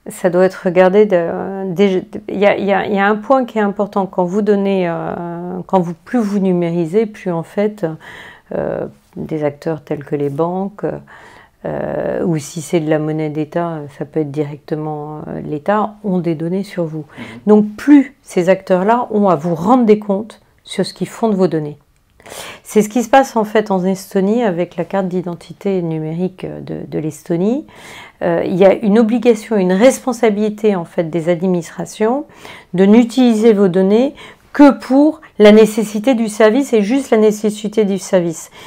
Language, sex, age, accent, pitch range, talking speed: French, female, 40-59, French, 175-220 Hz, 175 wpm